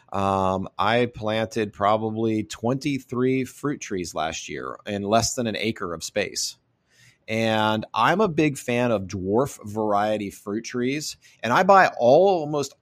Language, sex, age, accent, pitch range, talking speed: English, male, 30-49, American, 95-120 Hz, 145 wpm